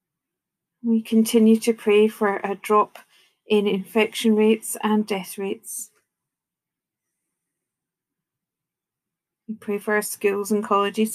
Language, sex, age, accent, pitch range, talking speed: English, female, 40-59, British, 205-225 Hz, 110 wpm